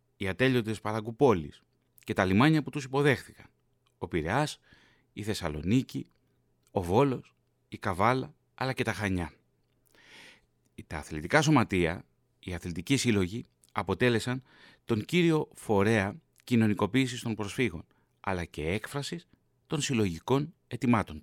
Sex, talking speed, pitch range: male, 115 wpm, 105-135 Hz